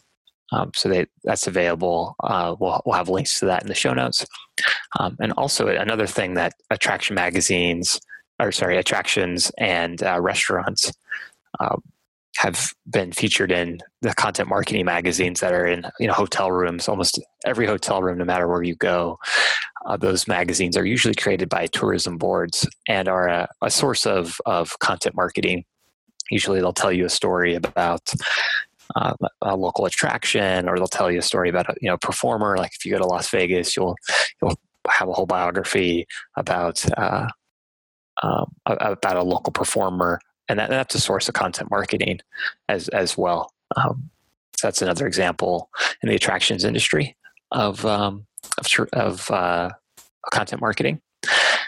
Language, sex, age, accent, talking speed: English, male, 20-39, American, 165 wpm